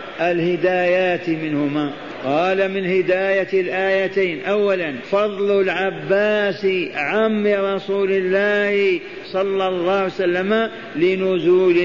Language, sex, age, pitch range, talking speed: Arabic, male, 50-69, 175-200 Hz, 80 wpm